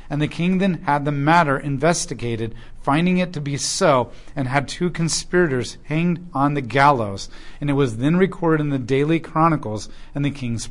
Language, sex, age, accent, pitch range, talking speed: English, male, 40-59, American, 120-155 Hz, 185 wpm